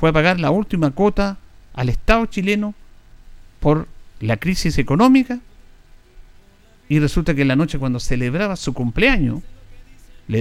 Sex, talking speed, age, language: male, 135 wpm, 50-69, Spanish